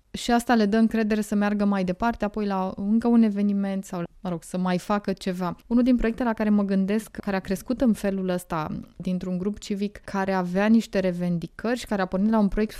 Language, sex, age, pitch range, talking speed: English, female, 20-39, 180-210 Hz, 225 wpm